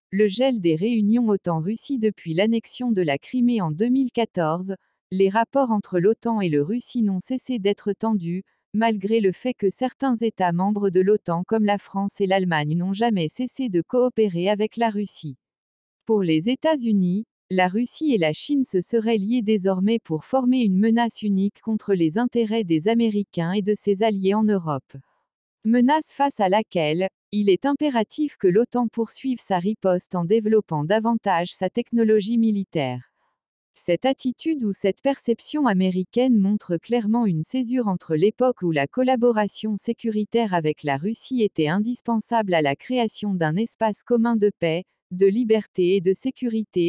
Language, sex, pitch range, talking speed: French, female, 185-235 Hz, 160 wpm